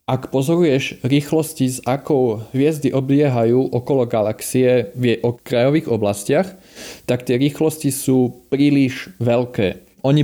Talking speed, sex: 115 wpm, male